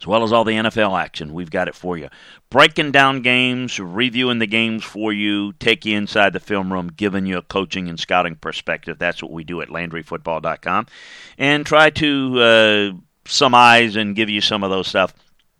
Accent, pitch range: American, 85-105 Hz